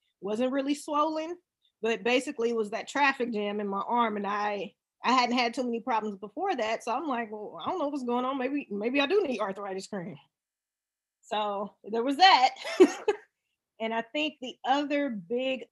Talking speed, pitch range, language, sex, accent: 190 wpm, 205-260 Hz, English, female, American